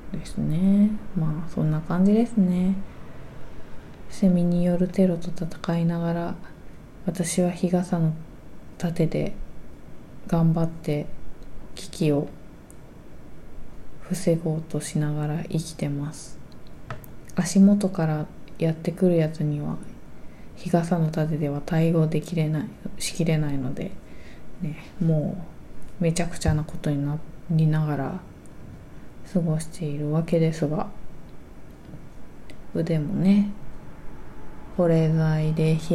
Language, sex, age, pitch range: Japanese, female, 20-39, 155-180 Hz